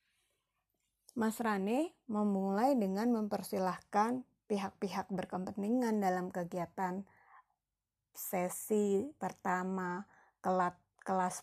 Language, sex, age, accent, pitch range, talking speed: Indonesian, female, 30-49, native, 185-225 Hz, 70 wpm